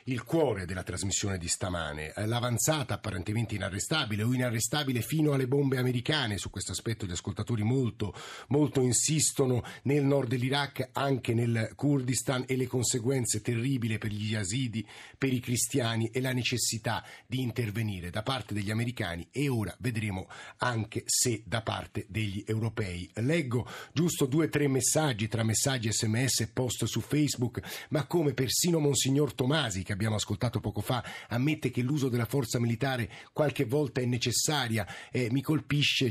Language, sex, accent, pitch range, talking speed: Italian, male, native, 105-135 Hz, 155 wpm